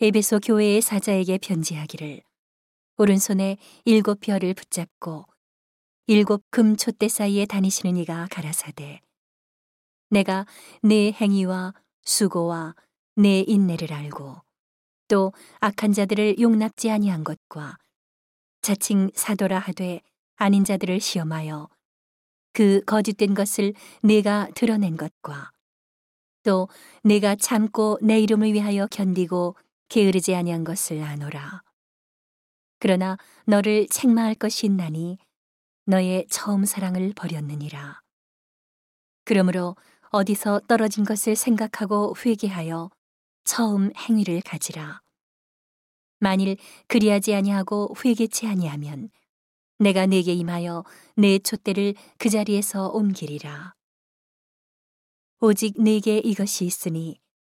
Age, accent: 40-59, native